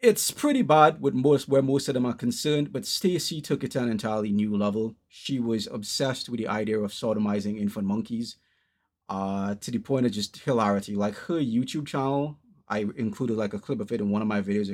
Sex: male